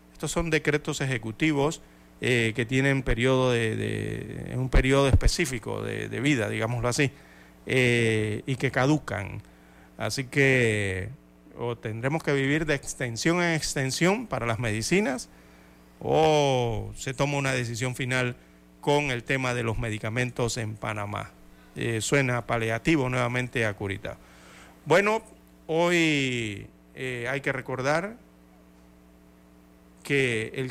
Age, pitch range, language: 40-59, 105-135 Hz, Spanish